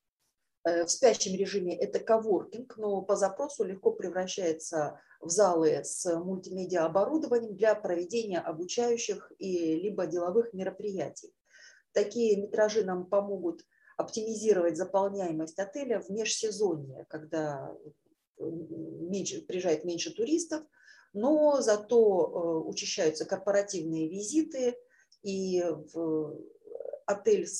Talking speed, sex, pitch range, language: 95 wpm, female, 170-230 Hz, Russian